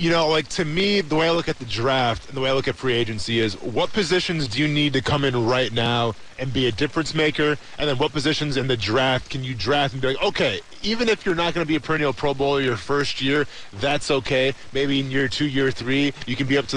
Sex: male